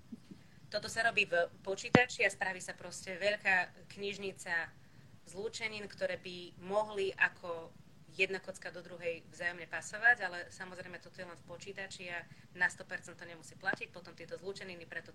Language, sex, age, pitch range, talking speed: Slovak, female, 20-39, 160-190 Hz, 155 wpm